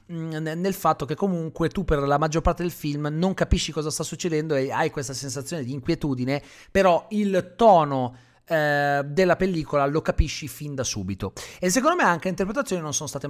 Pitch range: 135-185 Hz